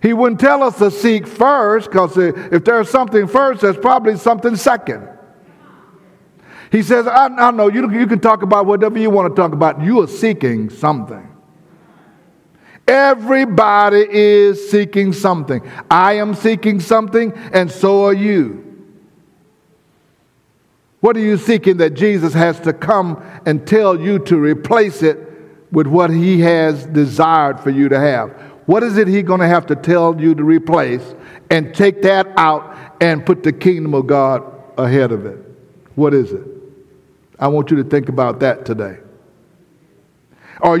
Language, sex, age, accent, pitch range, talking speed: English, male, 60-79, American, 160-225 Hz, 160 wpm